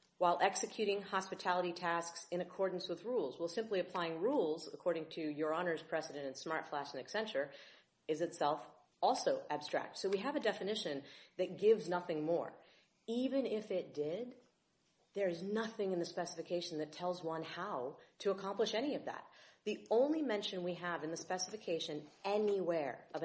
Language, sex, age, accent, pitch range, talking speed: English, female, 40-59, American, 160-205 Hz, 170 wpm